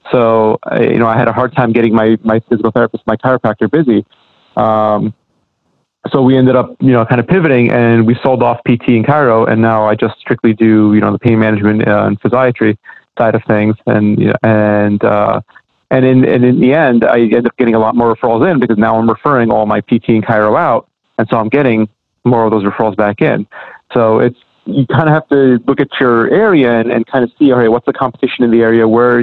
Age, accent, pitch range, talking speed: 30-49, American, 110-130 Hz, 235 wpm